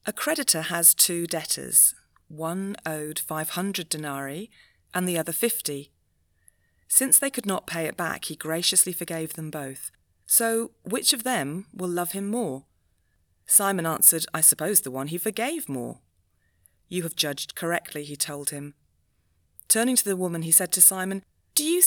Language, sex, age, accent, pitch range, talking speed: English, female, 30-49, British, 145-195 Hz, 160 wpm